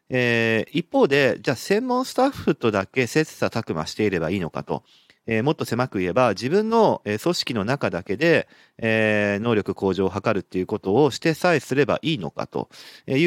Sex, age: male, 40-59